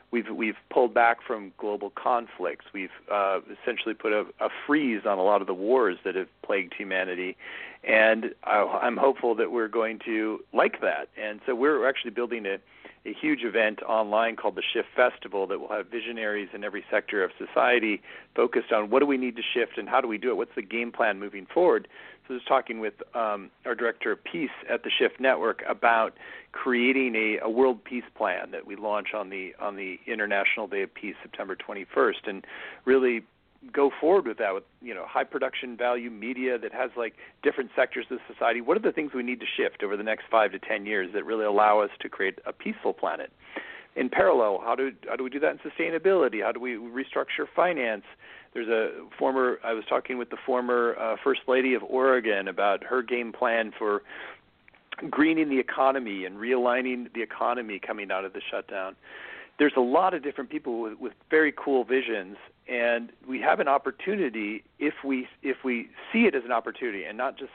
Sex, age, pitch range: male, 40-59, 110-130 Hz